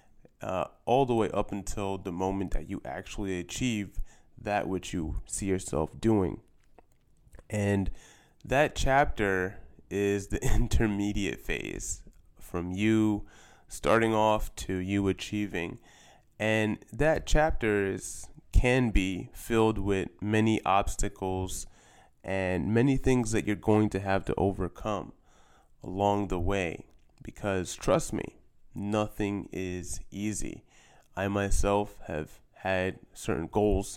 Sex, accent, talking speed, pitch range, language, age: male, American, 120 wpm, 95-105 Hz, English, 20-39